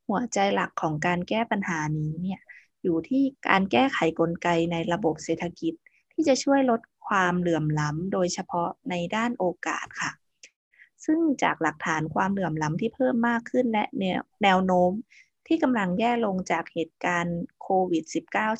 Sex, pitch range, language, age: female, 170-245 Hz, Thai, 20-39